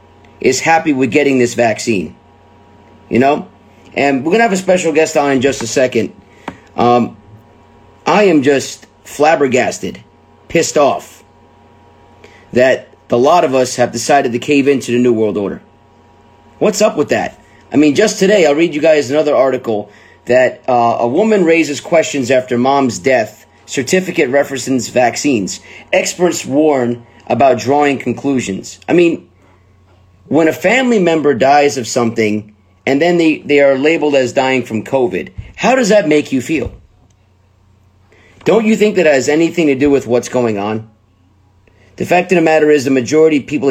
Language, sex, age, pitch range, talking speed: English, male, 30-49, 110-150 Hz, 165 wpm